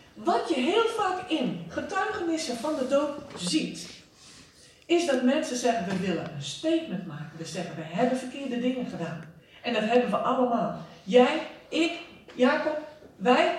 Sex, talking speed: female, 155 wpm